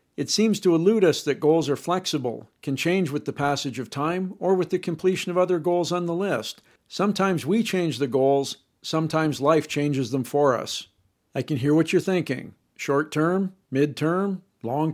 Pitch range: 145-180 Hz